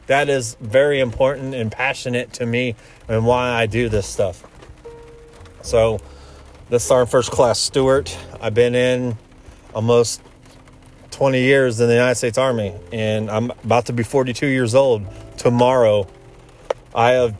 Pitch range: 110-130 Hz